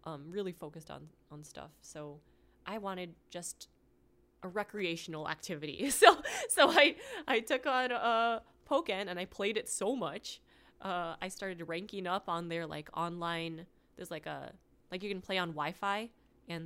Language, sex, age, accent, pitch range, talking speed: English, female, 20-39, American, 165-220 Hz, 165 wpm